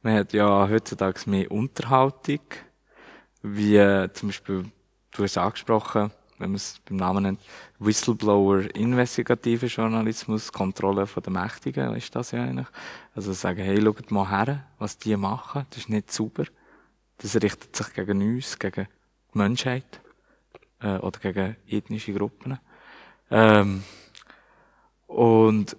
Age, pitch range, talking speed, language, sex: 20-39, 100-115 Hz, 135 wpm, German, male